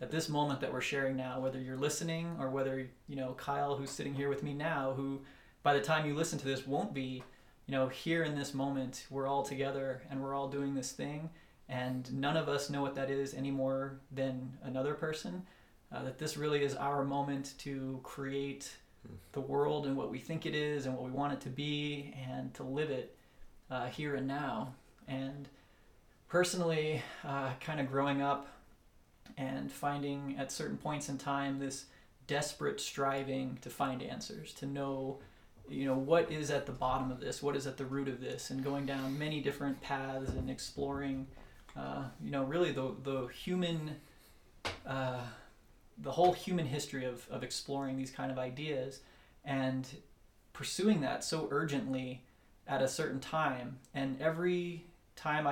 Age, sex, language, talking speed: 30-49, male, English, 180 wpm